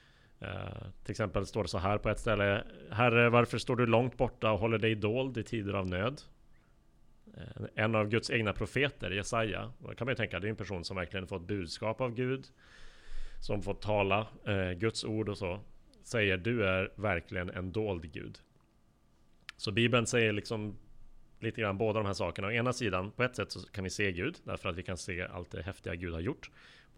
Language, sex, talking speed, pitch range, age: Swedish, male, 210 wpm, 100-120 Hz, 30-49